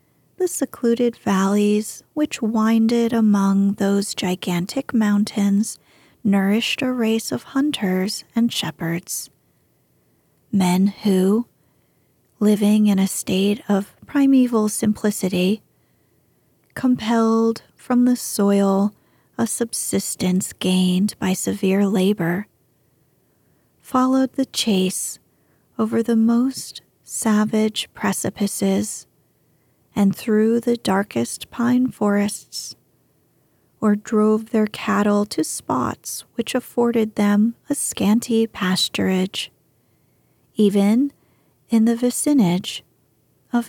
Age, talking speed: 30-49, 90 wpm